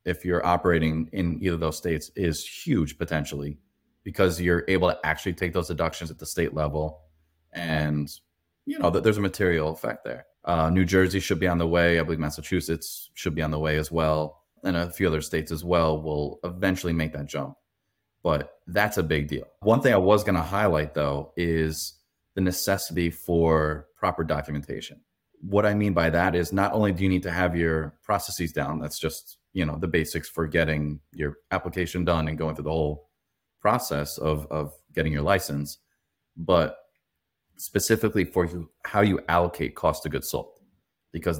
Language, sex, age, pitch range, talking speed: English, male, 30-49, 75-90 Hz, 190 wpm